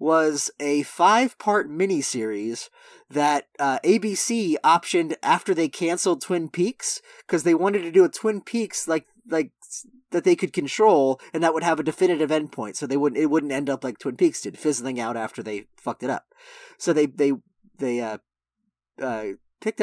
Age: 30-49